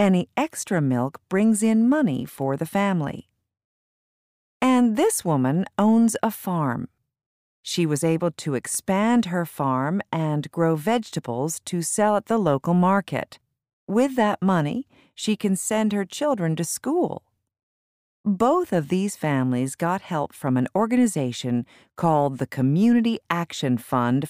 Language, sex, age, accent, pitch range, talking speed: English, female, 50-69, American, 140-210 Hz, 135 wpm